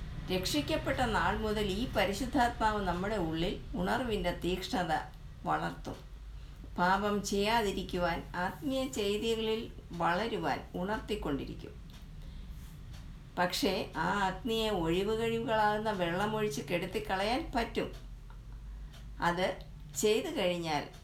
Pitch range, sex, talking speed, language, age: 170-220 Hz, female, 75 wpm, Malayalam, 60-79